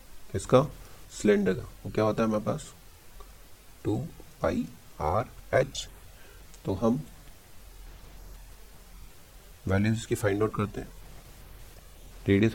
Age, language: 40-59, Hindi